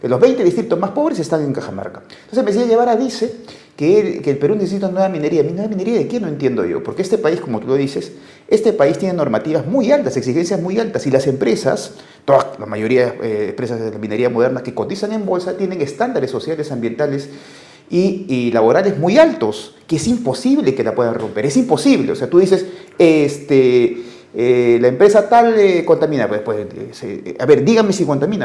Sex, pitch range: male, 135-205 Hz